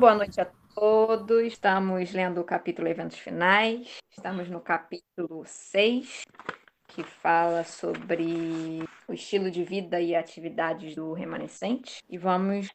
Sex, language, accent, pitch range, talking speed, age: female, Portuguese, Brazilian, 180-215 Hz, 125 wpm, 10-29